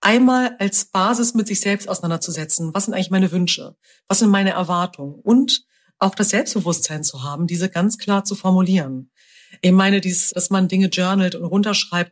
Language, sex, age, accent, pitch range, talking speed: German, female, 40-59, German, 185-220 Hz, 180 wpm